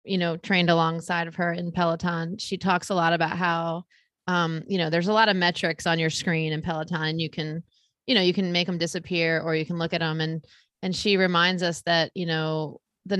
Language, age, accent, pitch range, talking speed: English, 30-49, American, 170-205 Hz, 230 wpm